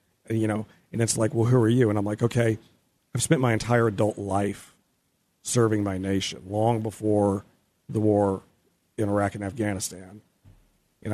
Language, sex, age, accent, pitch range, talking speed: English, male, 40-59, American, 100-120 Hz, 165 wpm